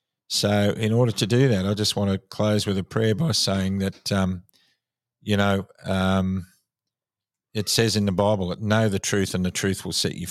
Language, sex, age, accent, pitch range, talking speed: English, male, 50-69, Australian, 95-105 Hz, 210 wpm